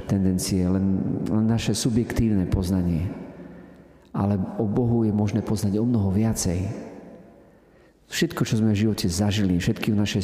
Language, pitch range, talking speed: Slovak, 90-110 Hz, 140 wpm